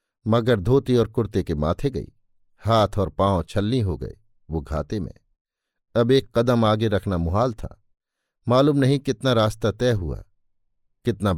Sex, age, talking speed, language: male, 50-69, 160 wpm, Hindi